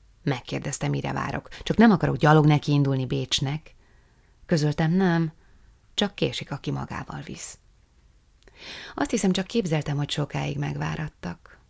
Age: 30-49